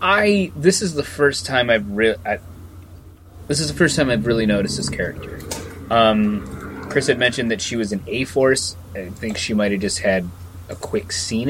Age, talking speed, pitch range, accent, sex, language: 30-49, 195 wpm, 90-125 Hz, American, male, English